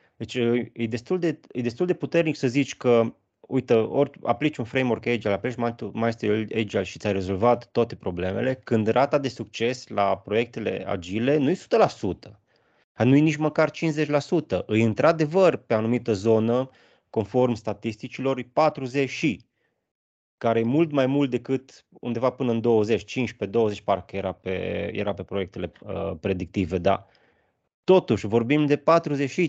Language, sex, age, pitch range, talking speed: Romanian, male, 20-39, 110-140 Hz, 150 wpm